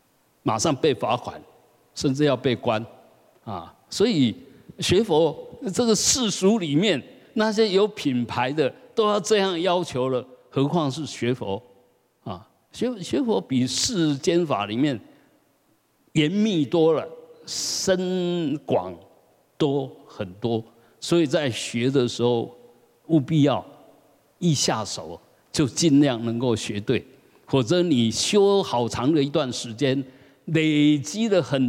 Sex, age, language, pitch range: male, 50-69, Chinese, 120-165 Hz